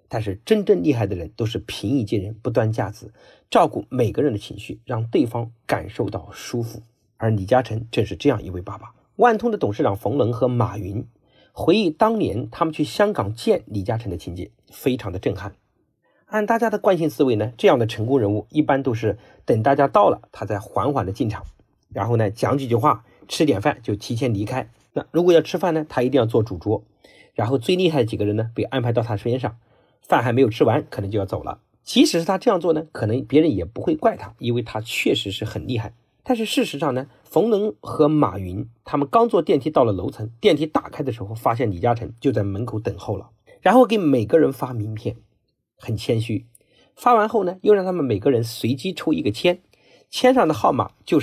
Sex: male